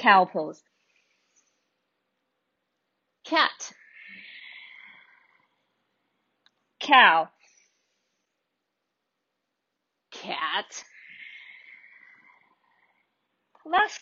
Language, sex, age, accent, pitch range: English, female, 30-49, American, 200-315 Hz